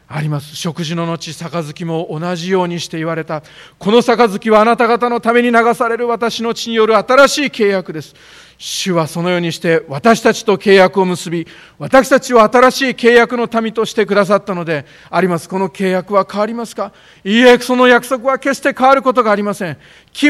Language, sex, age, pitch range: Japanese, male, 40-59, 155-235 Hz